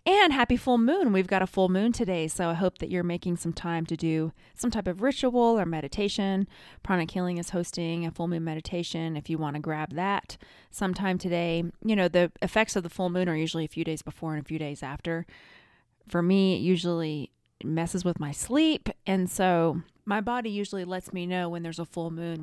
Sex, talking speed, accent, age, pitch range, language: female, 220 wpm, American, 30-49, 170-205 Hz, English